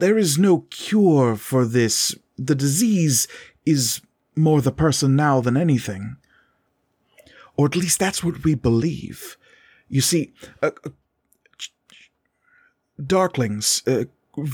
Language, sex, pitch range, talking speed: English, male, 125-155 Hz, 110 wpm